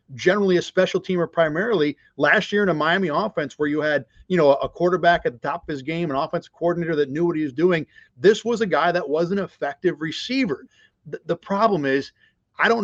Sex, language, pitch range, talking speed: male, English, 150-185 Hz, 225 wpm